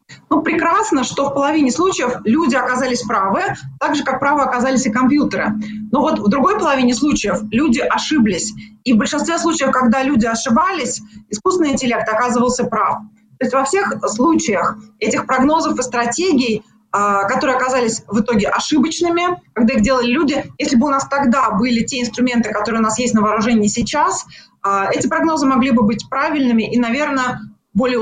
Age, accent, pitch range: 20-39, native, 220-270 Hz